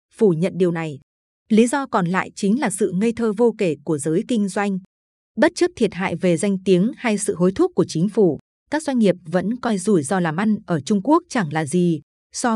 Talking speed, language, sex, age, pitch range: 235 wpm, Vietnamese, female, 20-39, 180-230 Hz